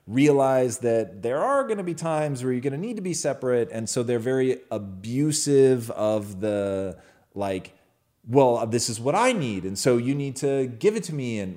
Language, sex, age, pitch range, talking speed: English, male, 30-49, 95-130 Hz, 210 wpm